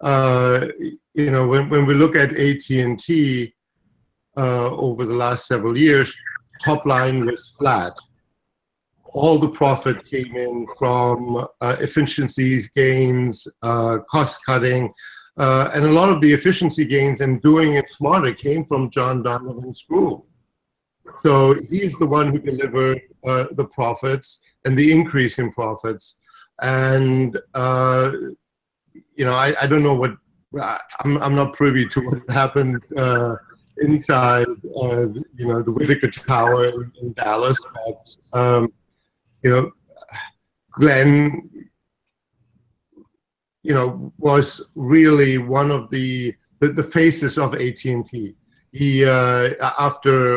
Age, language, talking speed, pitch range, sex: 50-69, English, 130 wpm, 125-145 Hz, male